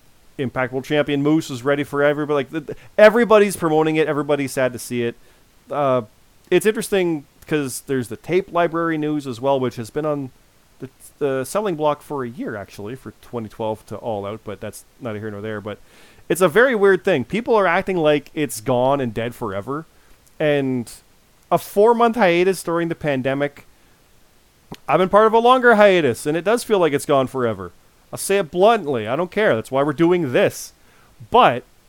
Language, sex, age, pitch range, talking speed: English, male, 30-49, 120-170 Hz, 190 wpm